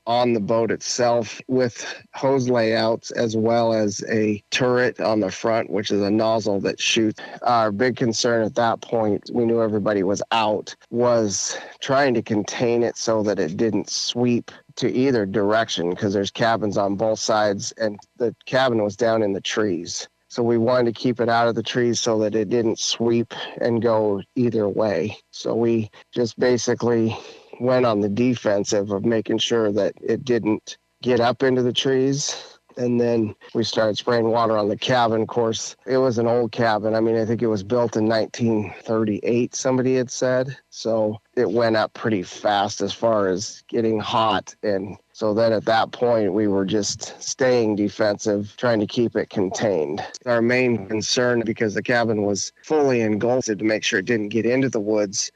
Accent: American